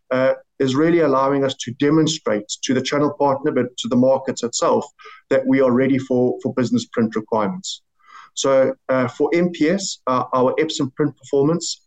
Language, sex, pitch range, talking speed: English, male, 125-155 Hz, 170 wpm